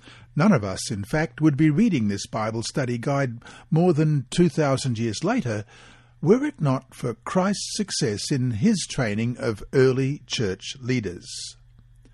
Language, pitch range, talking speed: English, 115-150 Hz, 150 wpm